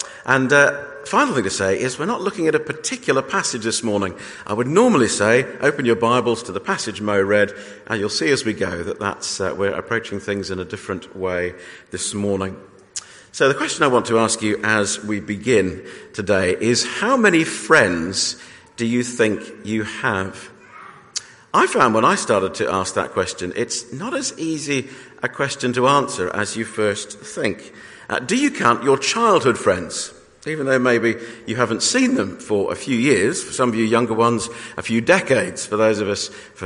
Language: English